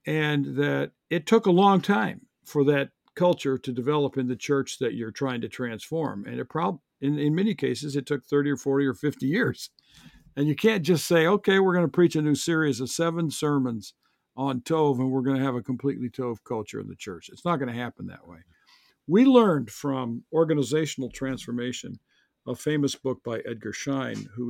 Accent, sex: American, male